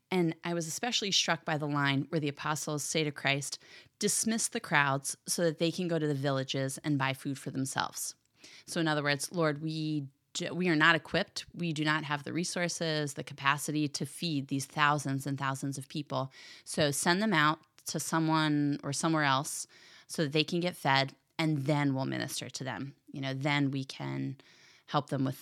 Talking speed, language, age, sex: 205 wpm, English, 20-39, female